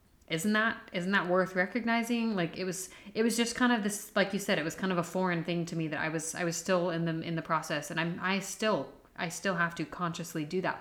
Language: English